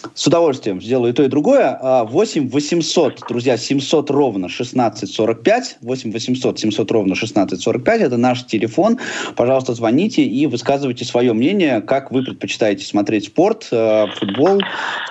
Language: Russian